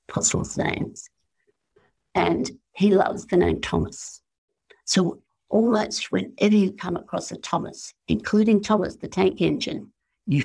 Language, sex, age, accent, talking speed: English, female, 60-79, British, 125 wpm